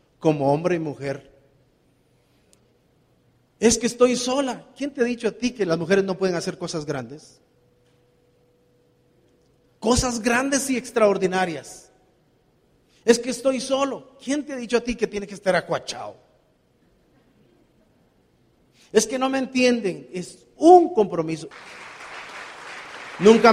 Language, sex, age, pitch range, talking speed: Spanish, male, 40-59, 175-240 Hz, 130 wpm